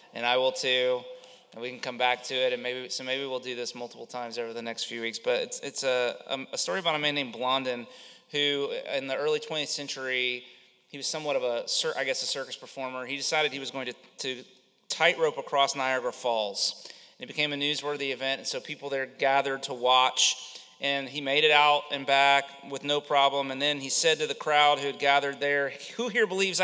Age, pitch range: 30-49, 130-160 Hz